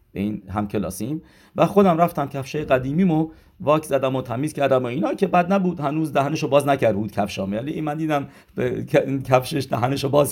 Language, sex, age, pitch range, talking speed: English, male, 50-69, 105-145 Hz, 205 wpm